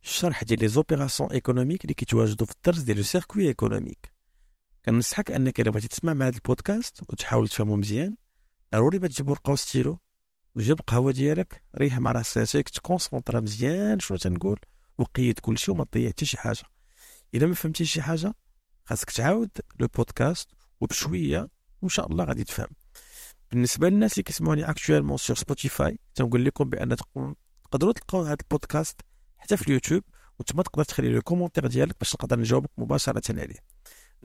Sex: male